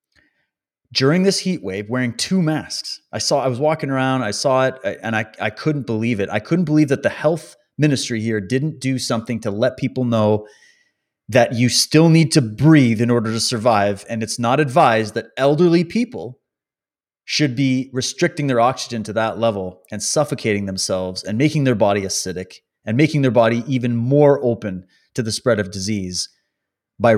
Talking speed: 185 wpm